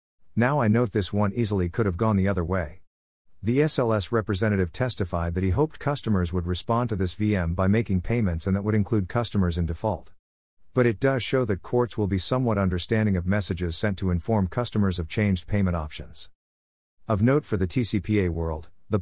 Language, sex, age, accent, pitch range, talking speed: English, male, 50-69, American, 90-115 Hz, 195 wpm